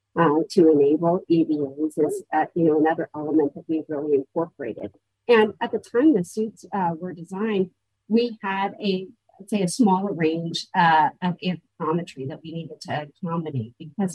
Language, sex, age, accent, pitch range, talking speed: English, female, 50-69, American, 155-180 Hz, 175 wpm